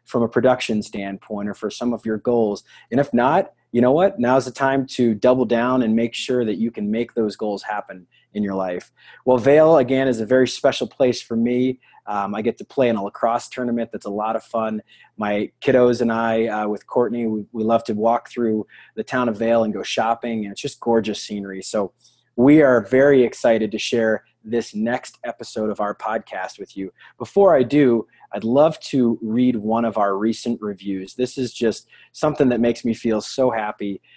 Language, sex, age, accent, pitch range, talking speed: English, male, 20-39, American, 110-125 Hz, 210 wpm